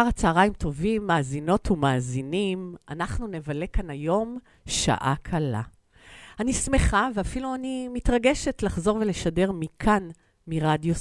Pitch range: 145-215 Hz